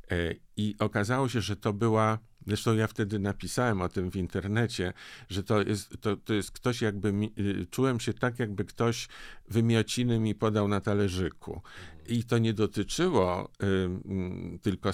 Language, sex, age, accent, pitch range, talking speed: Polish, male, 50-69, native, 95-115 Hz, 140 wpm